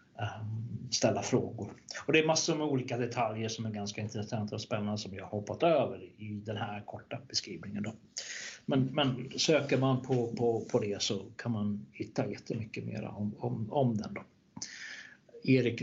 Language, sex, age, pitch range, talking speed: Swedish, male, 60-79, 110-150 Hz, 170 wpm